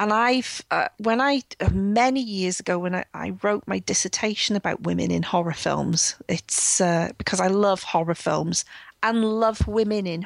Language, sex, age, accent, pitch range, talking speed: English, female, 40-59, British, 180-220 Hz, 175 wpm